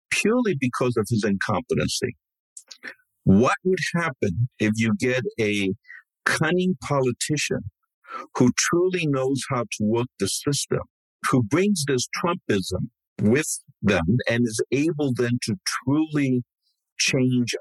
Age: 50-69